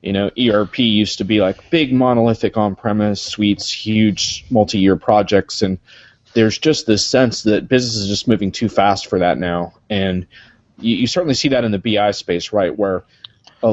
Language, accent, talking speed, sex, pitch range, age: English, American, 185 wpm, male, 100-120 Hz, 30-49